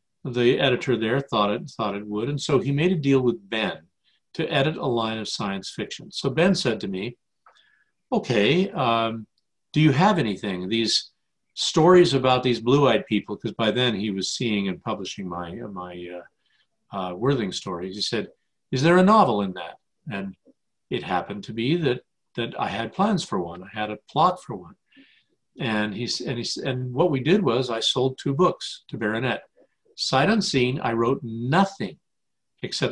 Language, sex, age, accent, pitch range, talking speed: English, male, 50-69, American, 105-150 Hz, 185 wpm